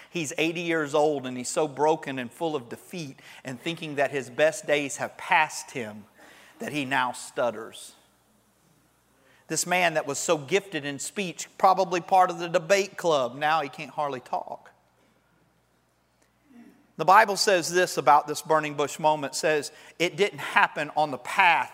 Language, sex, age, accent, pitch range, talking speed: English, male, 40-59, American, 155-235 Hz, 165 wpm